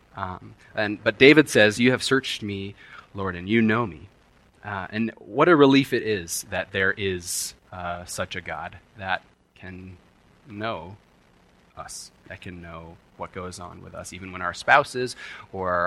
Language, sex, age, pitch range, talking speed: English, male, 30-49, 90-120 Hz, 170 wpm